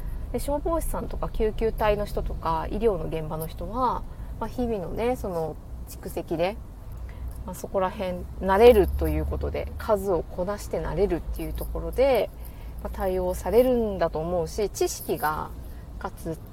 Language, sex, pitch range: Japanese, female, 160-245 Hz